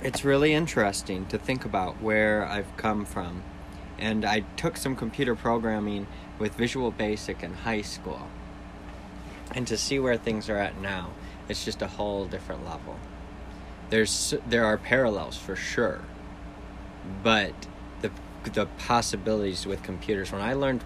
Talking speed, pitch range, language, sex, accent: 145 wpm, 95-110 Hz, English, male, American